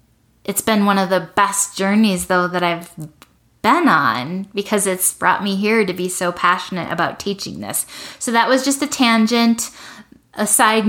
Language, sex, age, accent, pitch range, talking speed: English, female, 10-29, American, 175-210 Hz, 175 wpm